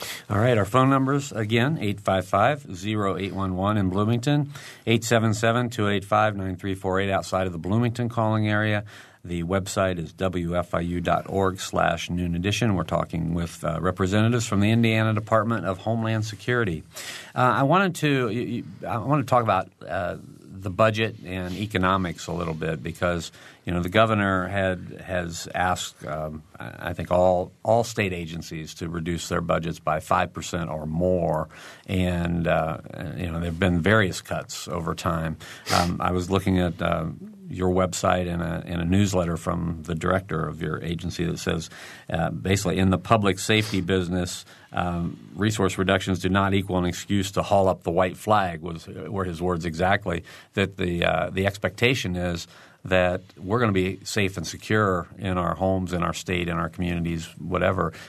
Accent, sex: American, male